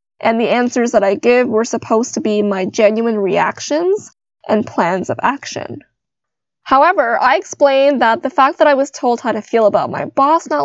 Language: English